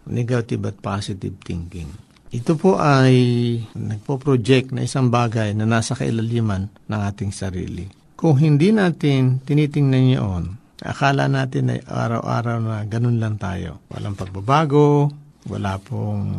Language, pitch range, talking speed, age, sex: Filipino, 110-140 Hz, 120 wpm, 60-79, male